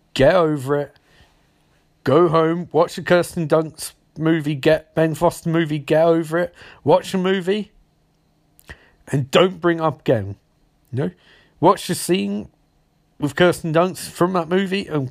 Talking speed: 145 wpm